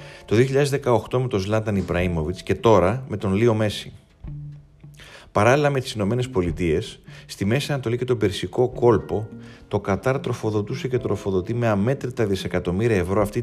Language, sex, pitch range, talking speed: Greek, male, 95-125 Hz, 150 wpm